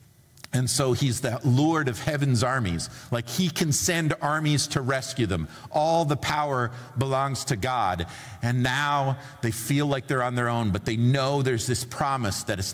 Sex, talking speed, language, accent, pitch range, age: male, 185 wpm, English, American, 100-135 Hz, 40-59